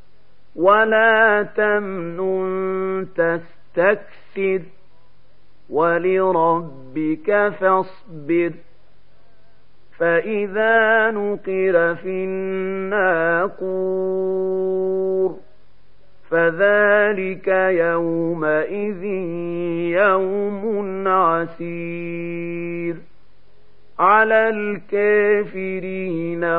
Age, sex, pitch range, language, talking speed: 50-69, male, 170-200 Hz, Arabic, 35 wpm